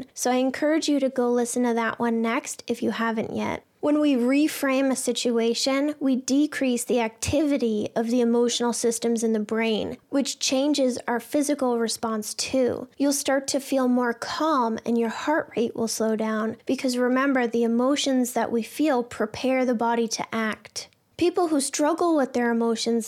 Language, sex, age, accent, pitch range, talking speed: English, female, 10-29, American, 230-265 Hz, 175 wpm